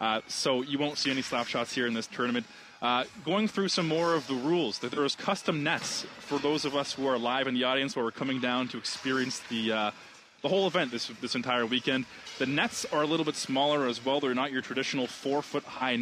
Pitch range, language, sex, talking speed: 125-155 Hz, English, male, 230 wpm